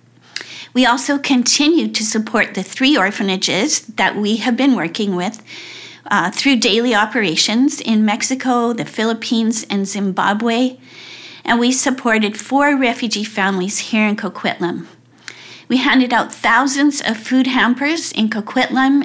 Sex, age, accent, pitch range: female, 50-69, American, 210-255 Hz